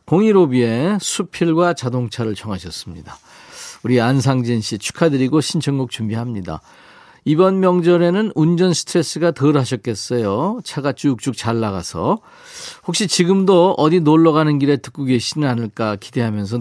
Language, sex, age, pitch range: Korean, male, 40-59, 115-170 Hz